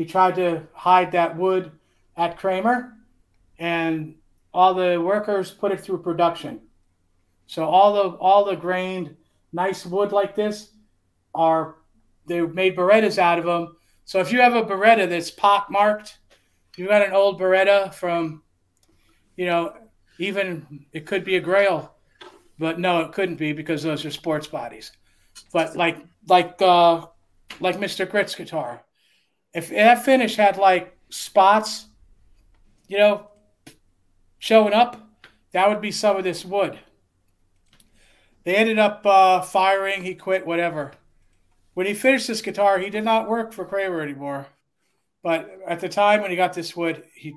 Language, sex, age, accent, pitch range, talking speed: English, male, 40-59, American, 160-205 Hz, 155 wpm